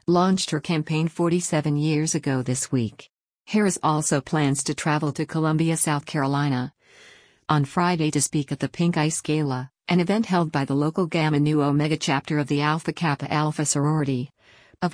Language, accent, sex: English, American, female